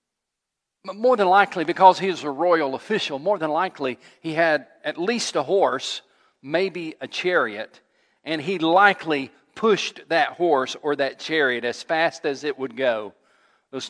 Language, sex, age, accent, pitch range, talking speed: English, male, 40-59, American, 130-185 Hz, 160 wpm